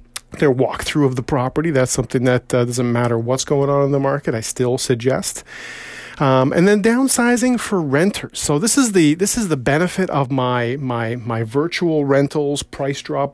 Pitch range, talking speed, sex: 135-185 Hz, 190 wpm, male